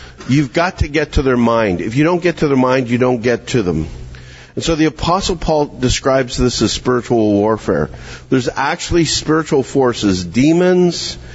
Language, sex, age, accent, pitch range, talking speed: English, male, 50-69, American, 100-145 Hz, 180 wpm